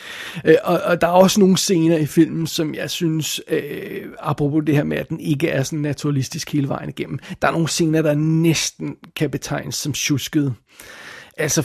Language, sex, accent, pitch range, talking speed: Danish, male, native, 140-160 Hz, 185 wpm